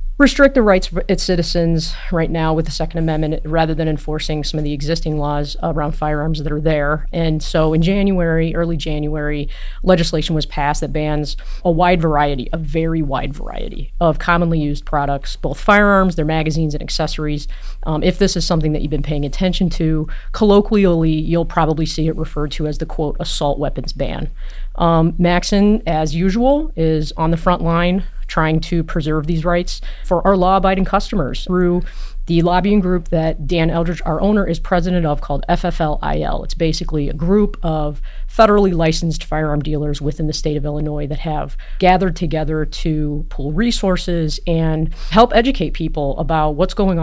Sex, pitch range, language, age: female, 155-180 Hz, English, 30-49